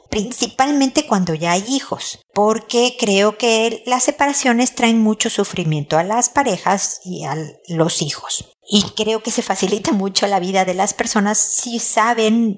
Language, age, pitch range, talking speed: Spanish, 50-69, 170-220 Hz, 155 wpm